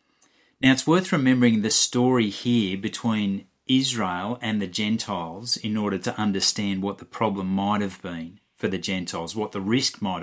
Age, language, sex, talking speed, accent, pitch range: 30-49, English, male, 170 wpm, Australian, 105-130 Hz